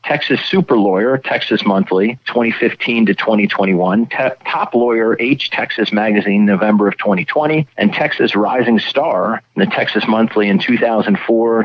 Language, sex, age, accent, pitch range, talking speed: English, male, 40-59, American, 100-120 Hz, 125 wpm